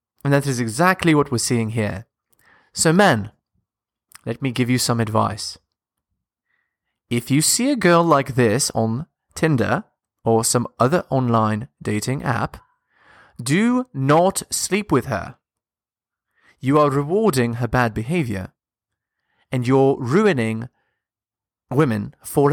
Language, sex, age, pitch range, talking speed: English, male, 30-49, 115-155 Hz, 125 wpm